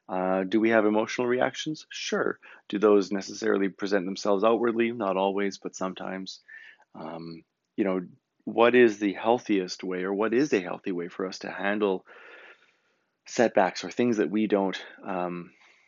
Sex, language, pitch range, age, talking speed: male, English, 95-110 Hz, 30-49, 160 wpm